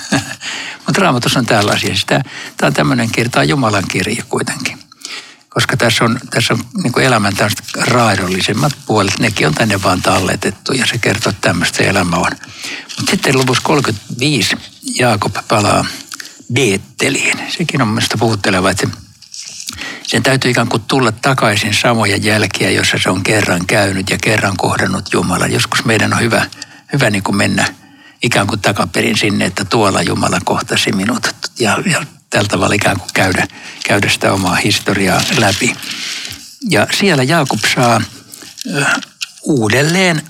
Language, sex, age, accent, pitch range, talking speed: Finnish, male, 60-79, native, 105-130 Hz, 140 wpm